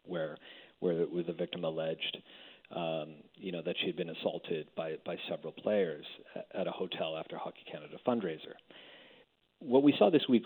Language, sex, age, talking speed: English, male, 40-59, 160 wpm